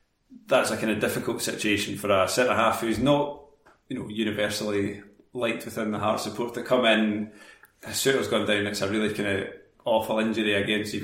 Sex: male